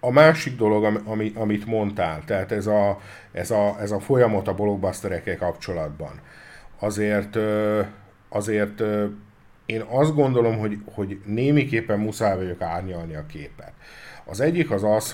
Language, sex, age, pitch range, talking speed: Hungarian, male, 50-69, 95-120 Hz, 135 wpm